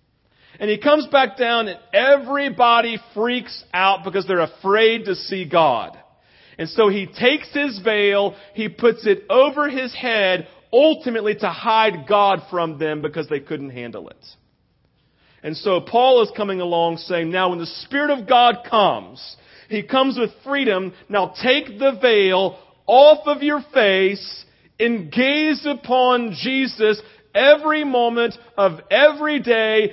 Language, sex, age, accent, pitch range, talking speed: English, male, 40-59, American, 185-250 Hz, 145 wpm